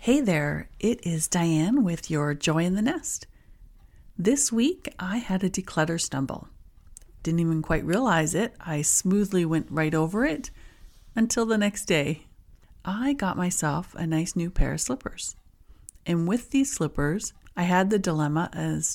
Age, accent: 40-59, American